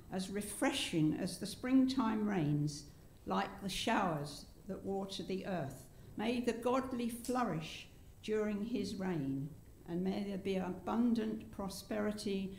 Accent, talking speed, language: British, 125 wpm, English